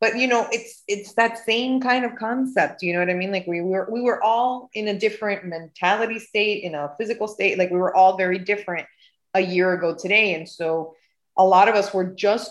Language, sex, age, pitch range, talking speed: English, female, 30-49, 180-230 Hz, 230 wpm